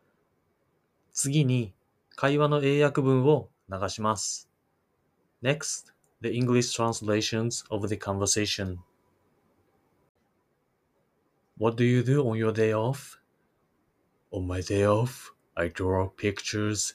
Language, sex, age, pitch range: Japanese, male, 20-39, 95-120 Hz